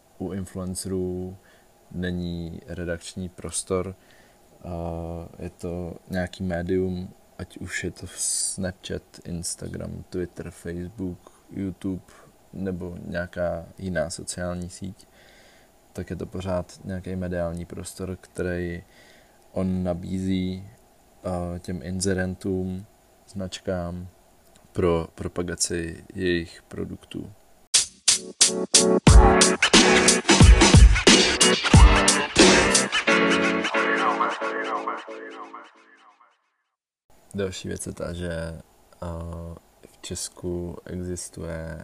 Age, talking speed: 20-39, 70 wpm